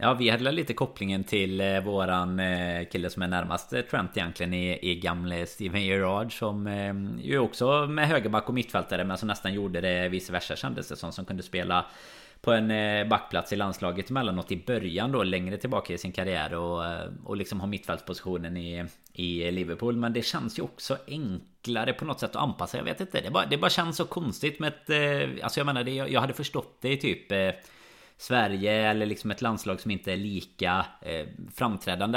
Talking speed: 185 wpm